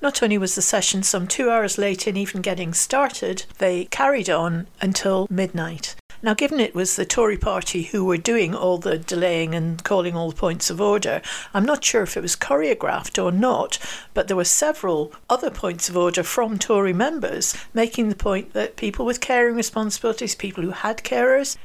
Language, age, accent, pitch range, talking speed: English, 60-79, British, 185-225 Hz, 195 wpm